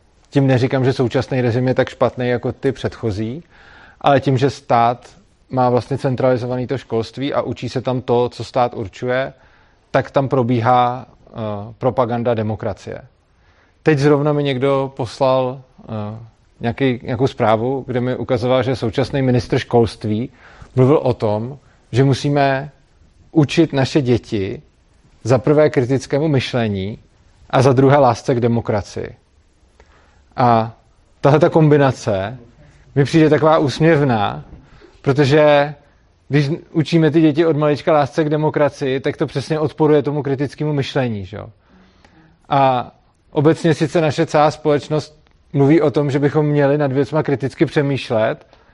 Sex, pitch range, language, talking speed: male, 120-150 Hz, Czech, 130 wpm